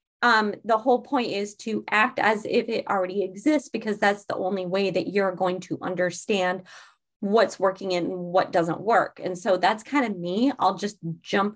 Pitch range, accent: 185-235 Hz, American